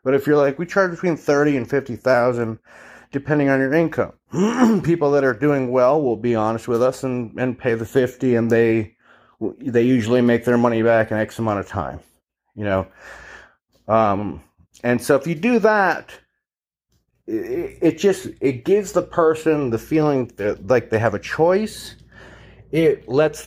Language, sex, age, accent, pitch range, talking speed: English, male, 30-49, American, 110-145 Hz, 175 wpm